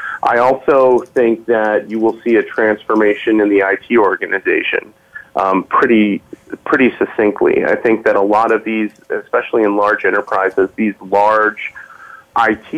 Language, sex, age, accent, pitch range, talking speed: English, male, 30-49, American, 100-110 Hz, 145 wpm